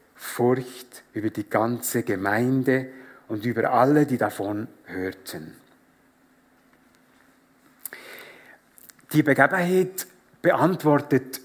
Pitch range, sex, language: 130-180 Hz, male, German